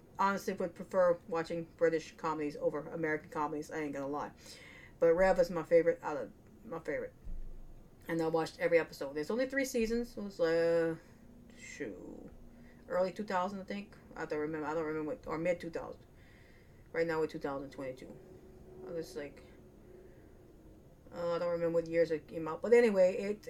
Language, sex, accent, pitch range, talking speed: English, female, American, 160-220 Hz, 185 wpm